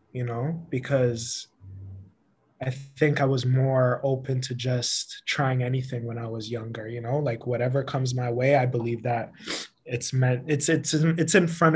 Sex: male